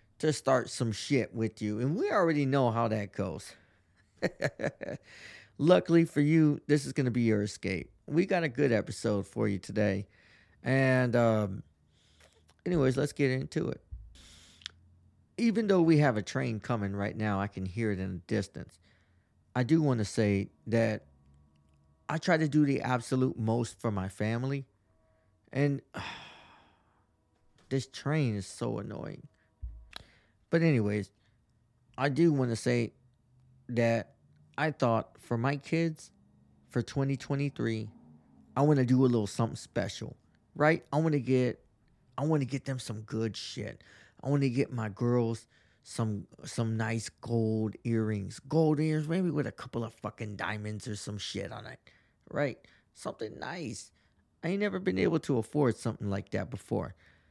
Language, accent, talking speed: English, American, 160 wpm